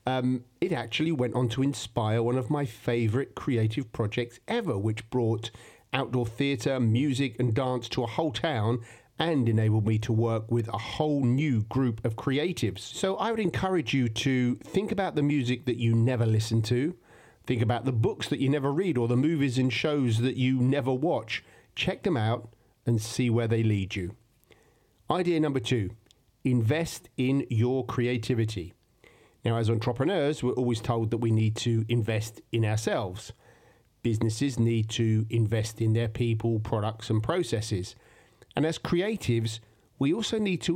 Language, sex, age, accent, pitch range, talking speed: English, male, 50-69, British, 115-130 Hz, 170 wpm